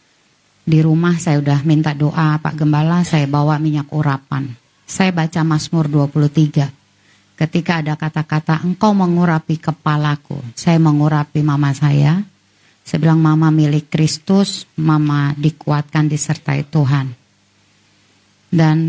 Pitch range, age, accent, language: 150-175 Hz, 30-49, native, Indonesian